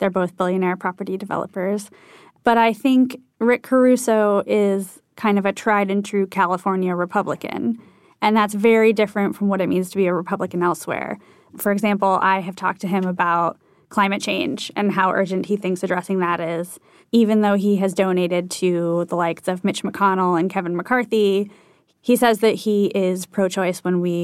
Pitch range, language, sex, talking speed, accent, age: 185-210 Hz, English, female, 180 wpm, American, 20-39